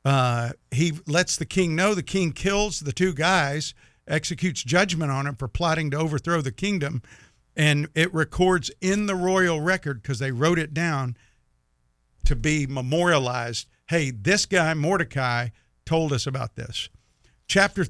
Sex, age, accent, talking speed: male, 50-69, American, 155 wpm